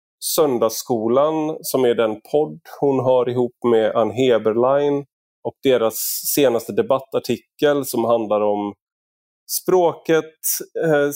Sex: male